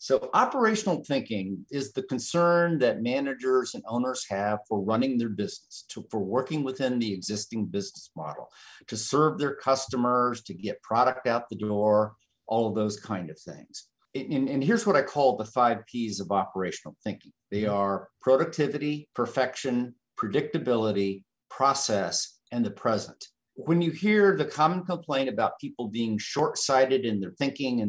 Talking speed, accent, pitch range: 160 wpm, American, 110-150 Hz